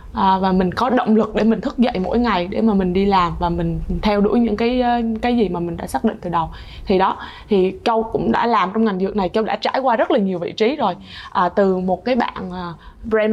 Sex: female